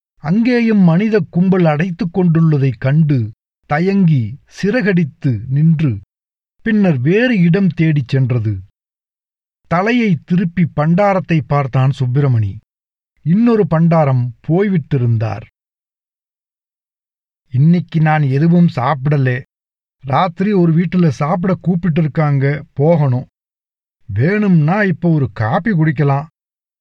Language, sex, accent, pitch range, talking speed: Tamil, male, native, 135-180 Hz, 85 wpm